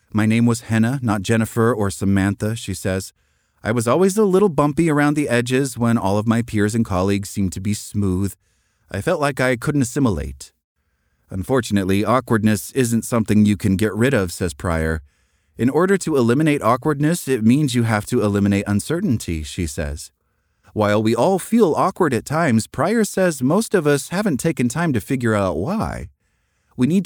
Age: 30-49